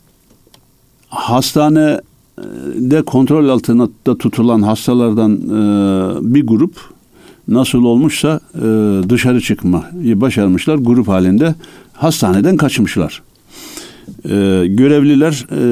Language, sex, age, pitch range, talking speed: Turkish, male, 60-79, 105-140 Hz, 65 wpm